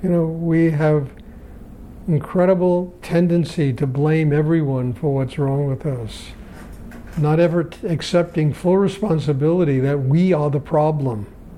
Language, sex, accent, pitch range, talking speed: English, male, American, 145-180 Hz, 130 wpm